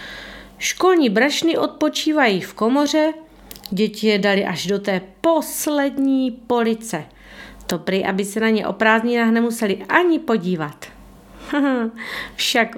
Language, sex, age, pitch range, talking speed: Czech, female, 40-59, 205-275 Hz, 115 wpm